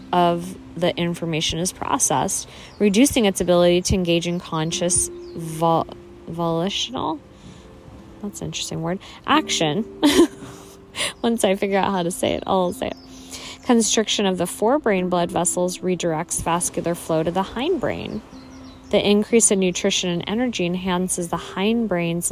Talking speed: 135 wpm